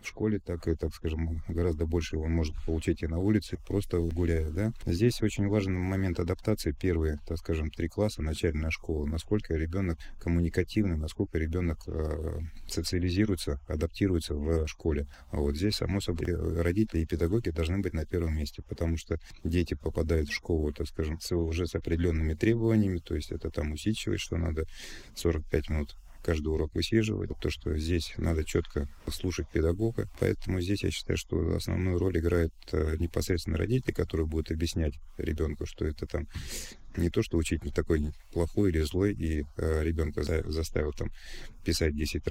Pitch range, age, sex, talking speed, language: 80-95 Hz, 30-49, male, 165 wpm, Russian